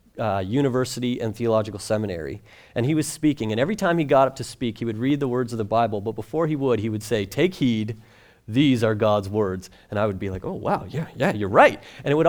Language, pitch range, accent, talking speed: English, 125-160 Hz, American, 255 wpm